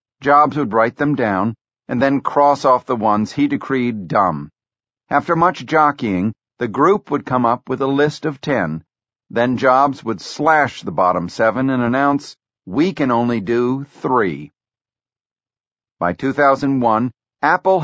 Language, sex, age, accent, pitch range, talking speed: English, male, 50-69, American, 115-145 Hz, 150 wpm